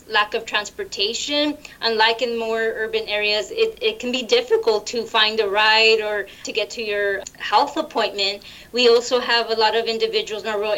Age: 20-39